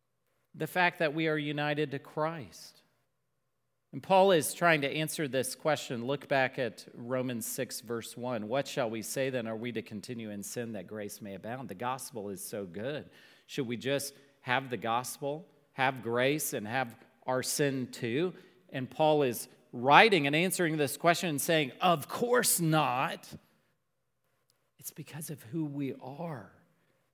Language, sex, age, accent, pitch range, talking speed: English, male, 40-59, American, 125-170 Hz, 165 wpm